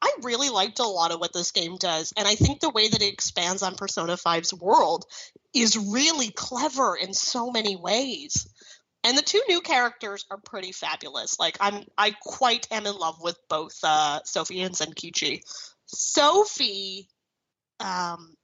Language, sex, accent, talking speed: English, female, American, 170 wpm